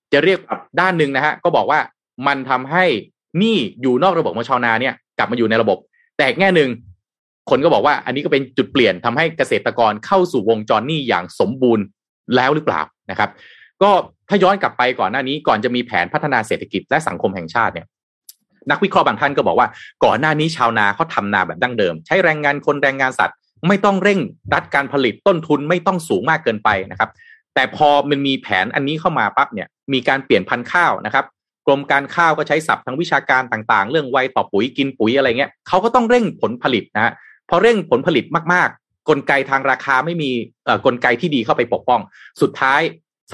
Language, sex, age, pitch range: Thai, male, 30-49, 125-180 Hz